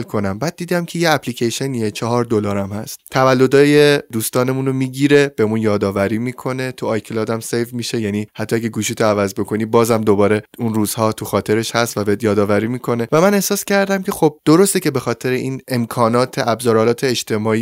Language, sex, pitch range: Persian, male, 110-140 Hz